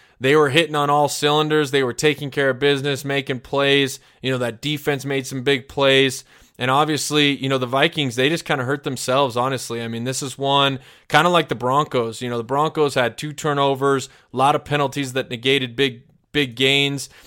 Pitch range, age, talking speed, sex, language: 130-145 Hz, 20-39, 210 wpm, male, English